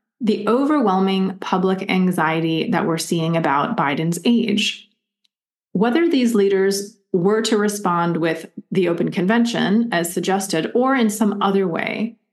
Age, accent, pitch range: 30-49, American, 190-230 Hz